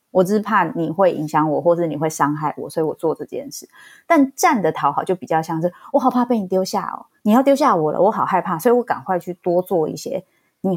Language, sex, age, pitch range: Chinese, female, 20-39, 170-245 Hz